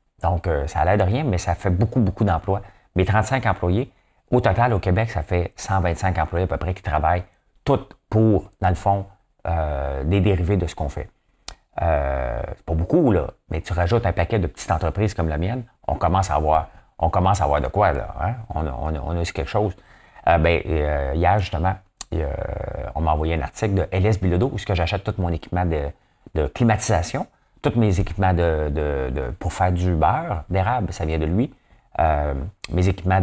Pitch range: 80-100 Hz